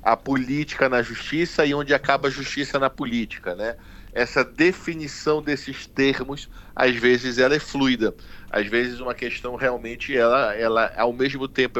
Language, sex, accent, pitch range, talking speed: Portuguese, male, Brazilian, 115-140 Hz, 145 wpm